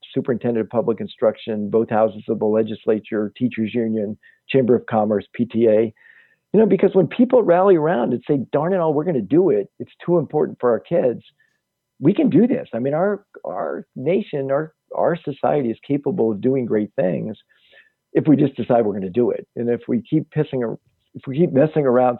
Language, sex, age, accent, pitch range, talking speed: English, male, 50-69, American, 115-160 Hz, 205 wpm